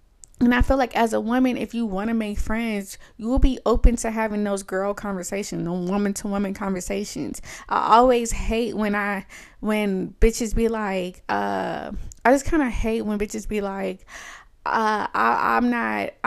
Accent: American